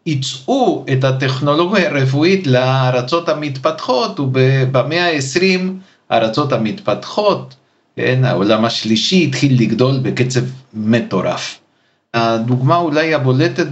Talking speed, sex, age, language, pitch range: 90 wpm, male, 50-69, Hebrew, 120-155 Hz